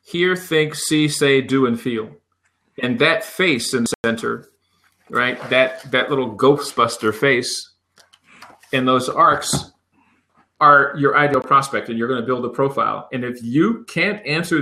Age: 40-59